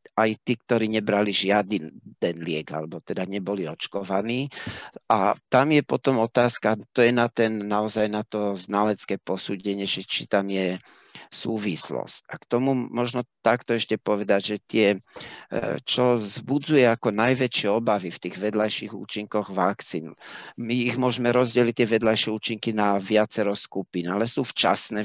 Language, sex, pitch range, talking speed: Slovak, male, 100-120 Hz, 145 wpm